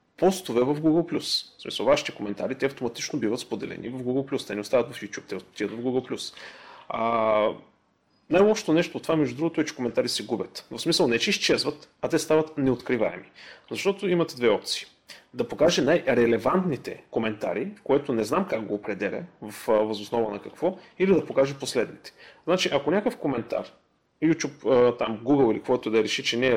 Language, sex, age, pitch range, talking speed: Bulgarian, male, 30-49, 115-165 Hz, 185 wpm